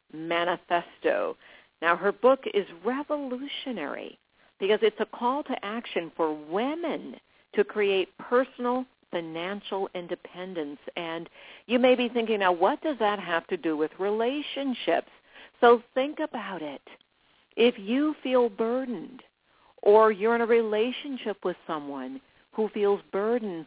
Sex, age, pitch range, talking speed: female, 50-69, 180-240 Hz, 130 wpm